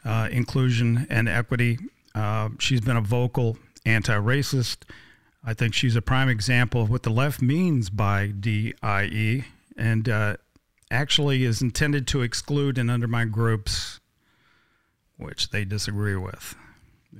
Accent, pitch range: American, 115-140 Hz